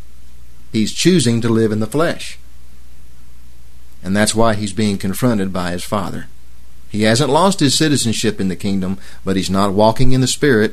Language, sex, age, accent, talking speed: English, male, 50-69, American, 175 wpm